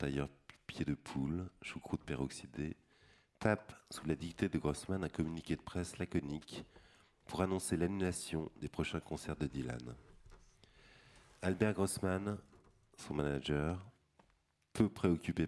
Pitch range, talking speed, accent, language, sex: 70-85 Hz, 120 wpm, French, French, male